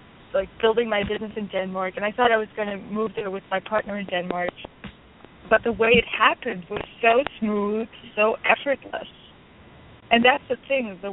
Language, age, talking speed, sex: English, 20-39, 190 wpm, female